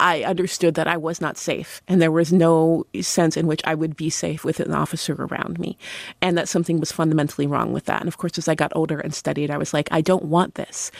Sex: female